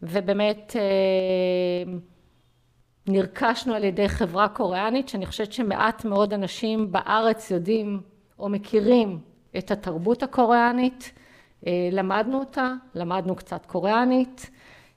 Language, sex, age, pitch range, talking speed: Hebrew, female, 50-69, 185-230 Hz, 90 wpm